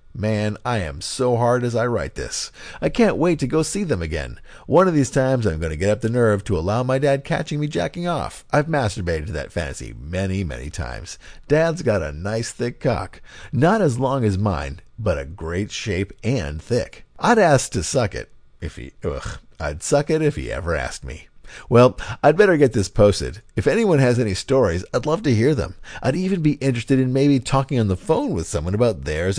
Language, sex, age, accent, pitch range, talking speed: English, male, 50-69, American, 90-140 Hz, 220 wpm